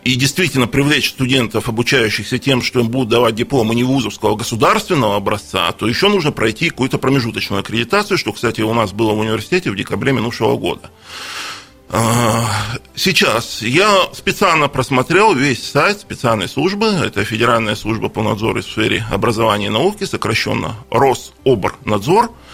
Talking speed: 145 wpm